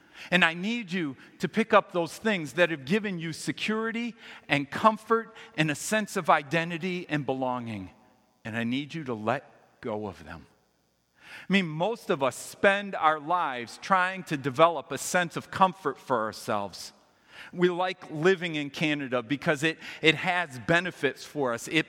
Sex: male